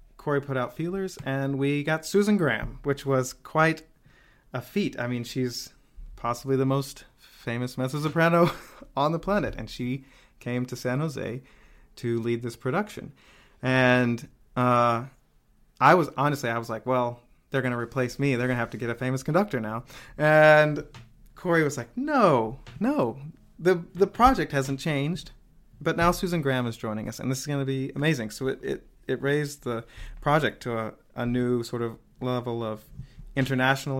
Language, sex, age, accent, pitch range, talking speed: English, male, 30-49, American, 120-145 Hz, 180 wpm